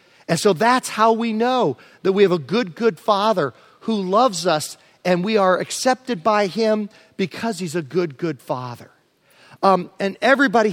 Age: 40-59